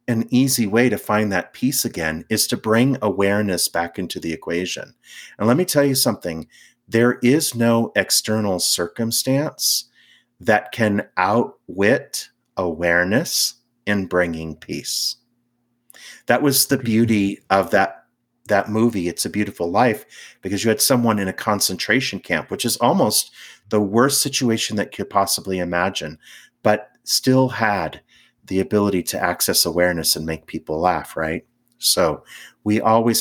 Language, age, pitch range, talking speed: English, 40-59, 90-120 Hz, 145 wpm